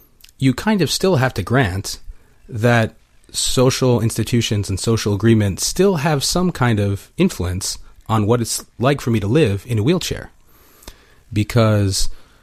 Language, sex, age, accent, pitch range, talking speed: English, male, 30-49, American, 95-125 Hz, 150 wpm